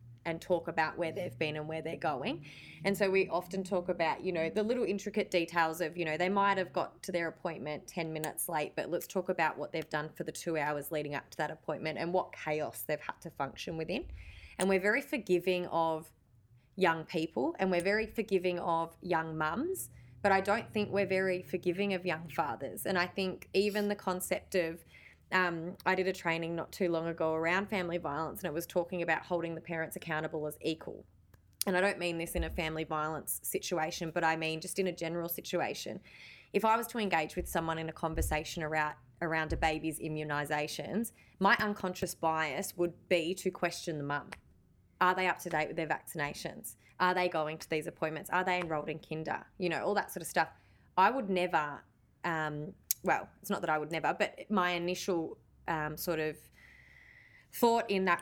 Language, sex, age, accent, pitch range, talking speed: English, female, 20-39, Australian, 155-185 Hz, 205 wpm